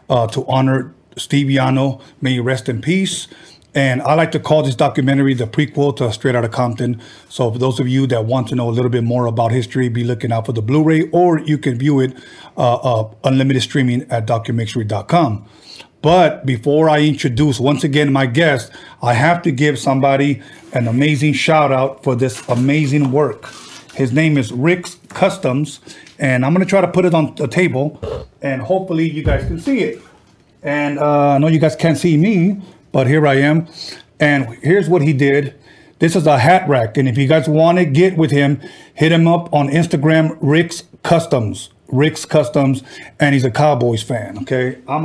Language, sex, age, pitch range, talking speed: English, male, 30-49, 130-160 Hz, 195 wpm